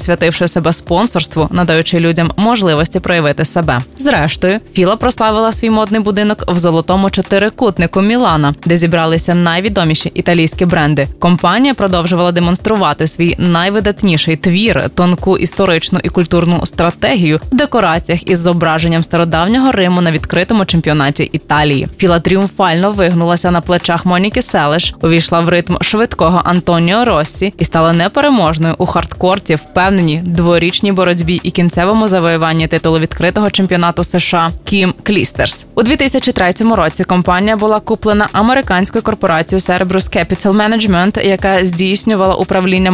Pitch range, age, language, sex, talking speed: 170-205 Hz, 20-39, Ukrainian, female, 125 wpm